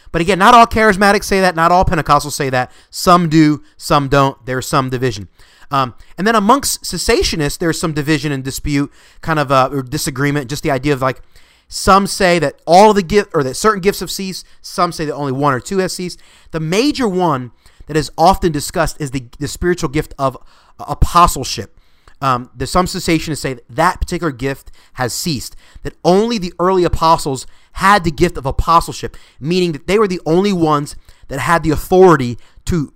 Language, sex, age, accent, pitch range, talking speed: English, male, 30-49, American, 130-180 Hz, 195 wpm